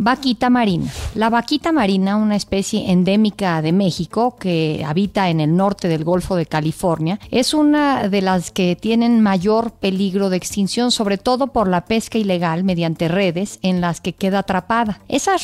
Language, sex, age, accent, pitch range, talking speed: Spanish, female, 40-59, Mexican, 185-235 Hz, 165 wpm